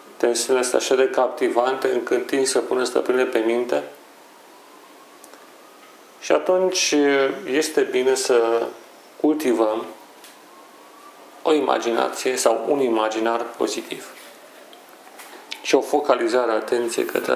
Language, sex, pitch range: Romanian, male, 120-175 Hz